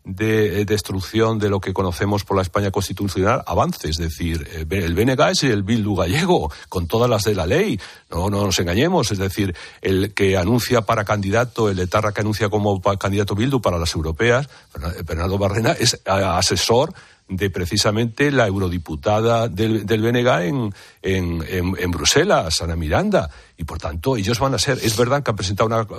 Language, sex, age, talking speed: Spanish, male, 60-79, 180 wpm